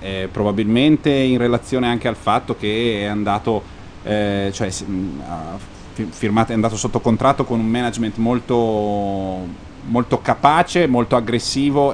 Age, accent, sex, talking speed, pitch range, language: 30-49, native, male, 125 wpm, 110-140 Hz, Italian